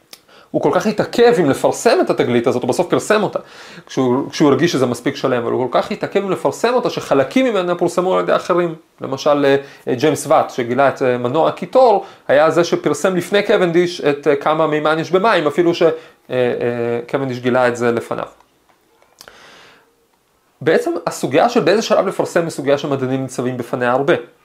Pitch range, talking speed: 135-185 Hz, 165 wpm